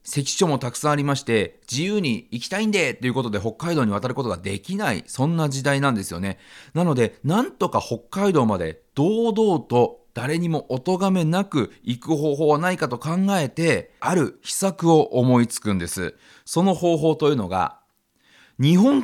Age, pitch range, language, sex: 40-59, 120-185 Hz, Japanese, male